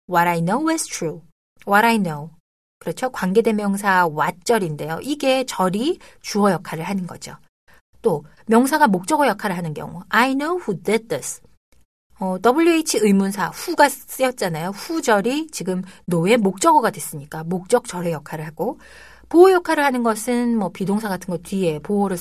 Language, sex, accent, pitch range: Korean, female, native, 170-245 Hz